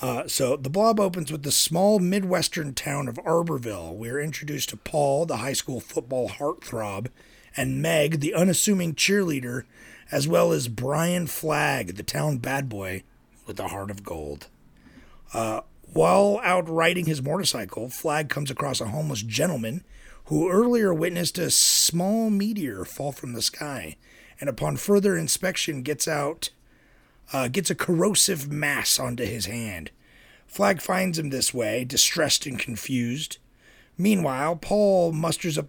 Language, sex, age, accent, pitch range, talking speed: English, male, 30-49, American, 130-180 Hz, 150 wpm